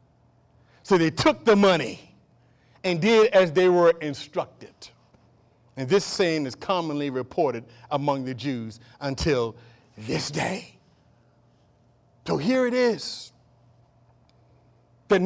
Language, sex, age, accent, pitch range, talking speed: English, male, 40-59, American, 150-235 Hz, 110 wpm